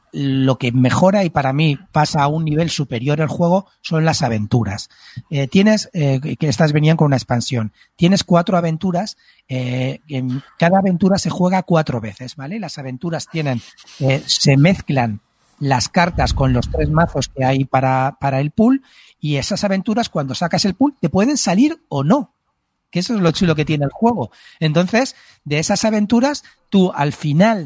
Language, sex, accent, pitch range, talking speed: Spanish, male, Spanish, 140-190 Hz, 180 wpm